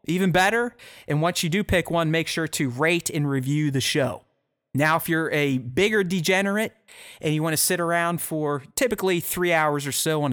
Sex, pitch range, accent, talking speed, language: male, 130-170 Hz, American, 205 wpm, English